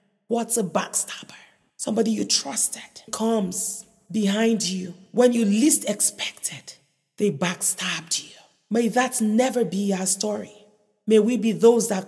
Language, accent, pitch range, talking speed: English, Nigerian, 220-275 Hz, 135 wpm